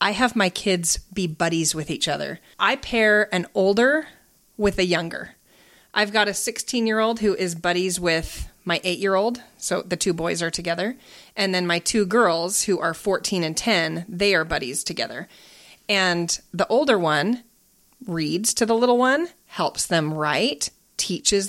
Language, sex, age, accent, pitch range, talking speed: English, female, 30-49, American, 170-210 Hz, 175 wpm